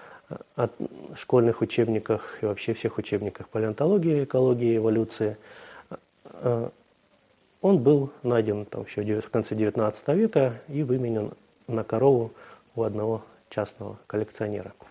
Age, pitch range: 30-49, 105-125 Hz